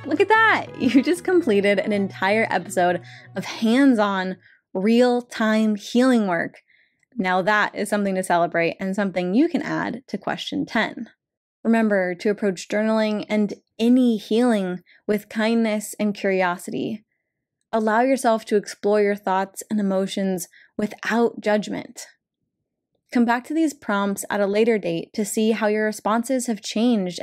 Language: English